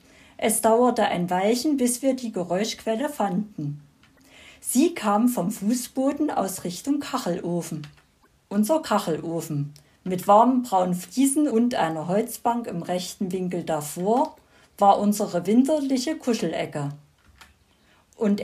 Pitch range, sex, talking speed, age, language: 185-270 Hz, female, 110 wpm, 50-69, German